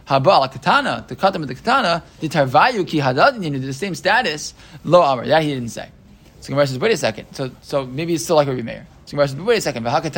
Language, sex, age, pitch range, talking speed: English, male, 20-39, 140-170 Hz, 160 wpm